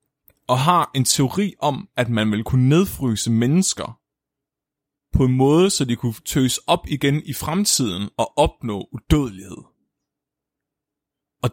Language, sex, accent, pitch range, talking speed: Danish, male, native, 125-160 Hz, 135 wpm